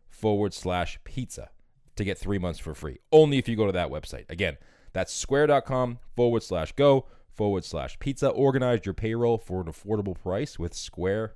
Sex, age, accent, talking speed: male, 20-39, American, 180 wpm